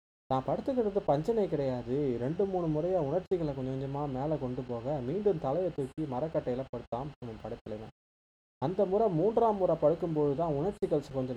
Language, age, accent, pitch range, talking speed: Tamil, 20-39, native, 125-160 Hz, 150 wpm